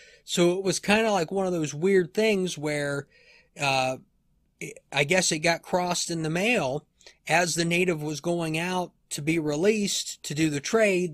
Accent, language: American, English